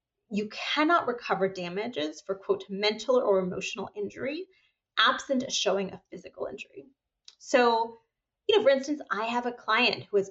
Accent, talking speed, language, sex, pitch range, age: American, 155 wpm, English, female, 200-265 Hz, 30-49